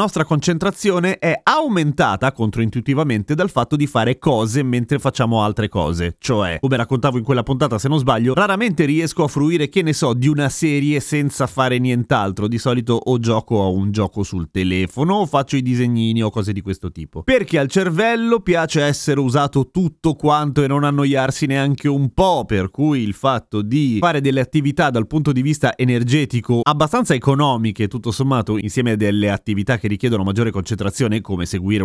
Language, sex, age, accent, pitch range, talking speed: Italian, male, 30-49, native, 120-170 Hz, 180 wpm